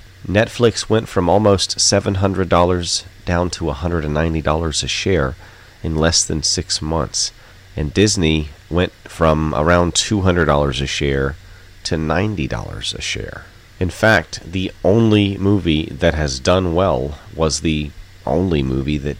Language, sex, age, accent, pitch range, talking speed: English, male, 30-49, American, 75-95 Hz, 130 wpm